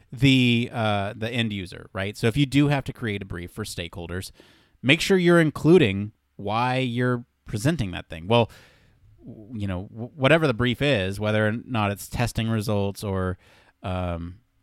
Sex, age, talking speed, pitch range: male, 30-49, 170 wpm, 105-140 Hz